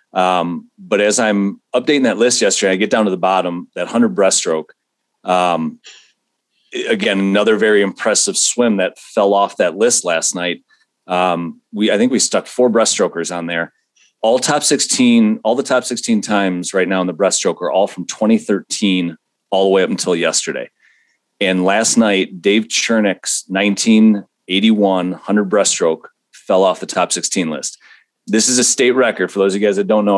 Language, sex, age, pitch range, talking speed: English, male, 30-49, 95-120 Hz, 180 wpm